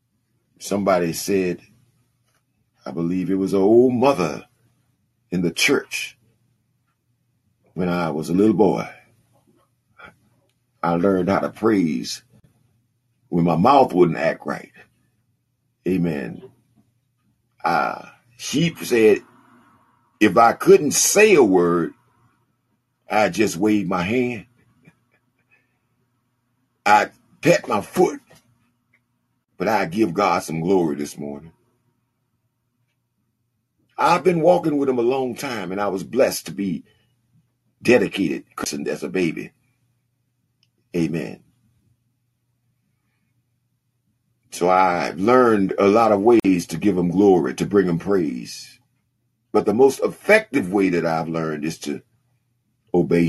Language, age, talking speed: English, 50-69, 115 wpm